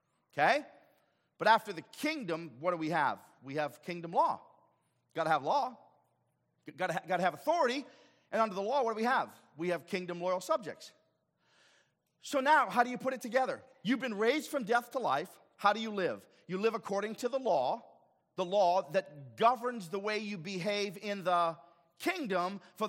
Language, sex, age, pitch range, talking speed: English, male, 40-59, 165-230 Hz, 185 wpm